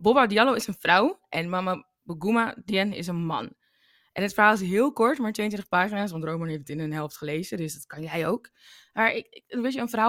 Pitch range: 165-210 Hz